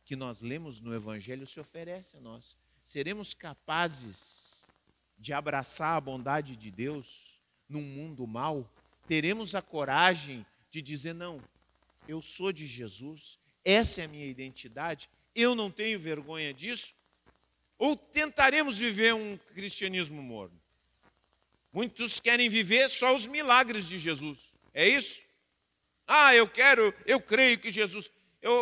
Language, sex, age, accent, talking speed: Portuguese, male, 50-69, Brazilian, 130 wpm